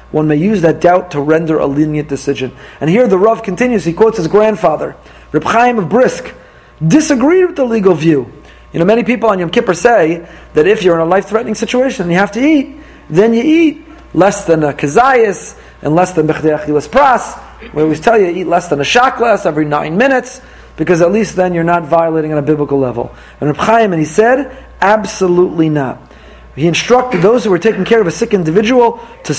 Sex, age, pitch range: male, 40-59, 155-220 Hz